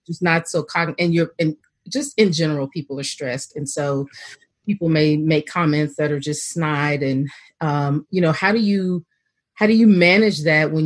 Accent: American